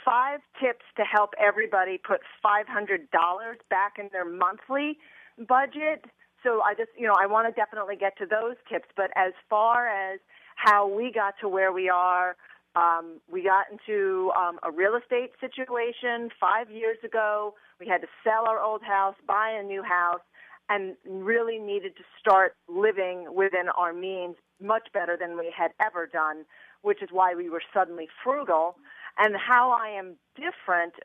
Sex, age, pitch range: female, 40-59, 185-230 Hz